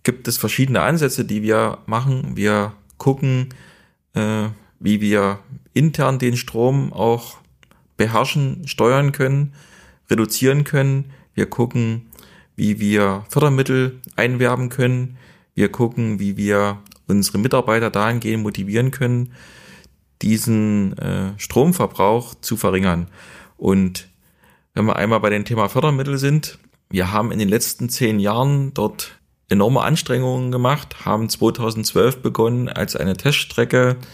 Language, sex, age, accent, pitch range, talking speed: German, male, 30-49, German, 105-130 Hz, 115 wpm